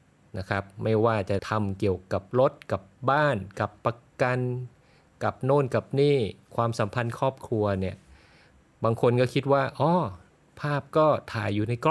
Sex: male